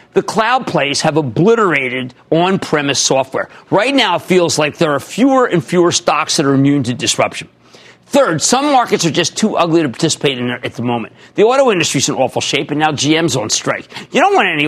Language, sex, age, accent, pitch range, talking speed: English, male, 50-69, American, 140-215 Hz, 215 wpm